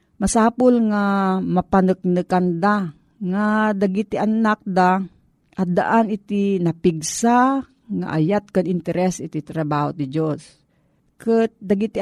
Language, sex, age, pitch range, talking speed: Filipino, female, 40-59, 170-205 Hz, 105 wpm